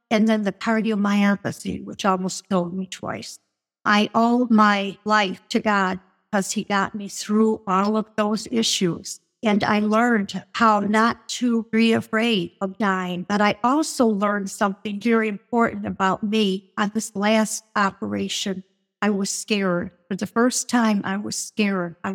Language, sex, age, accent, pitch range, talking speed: English, female, 60-79, American, 200-230 Hz, 155 wpm